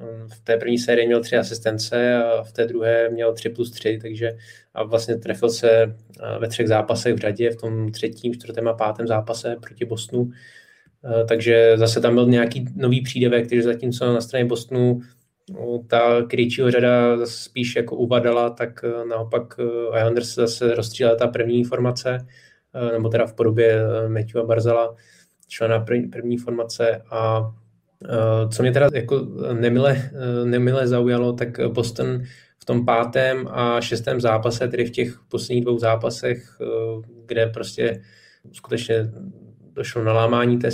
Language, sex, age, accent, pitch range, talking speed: Czech, male, 20-39, native, 115-120 Hz, 150 wpm